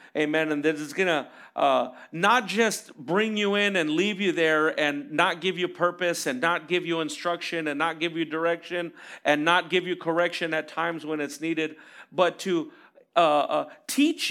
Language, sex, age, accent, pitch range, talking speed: English, male, 40-59, American, 160-215 Hz, 195 wpm